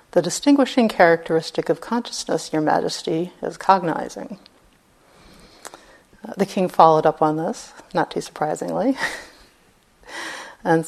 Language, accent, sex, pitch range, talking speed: English, American, female, 165-205 Hz, 110 wpm